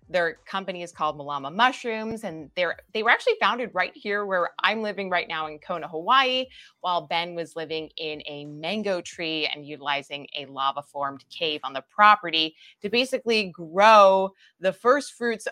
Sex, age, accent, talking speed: female, 20-39, American, 170 wpm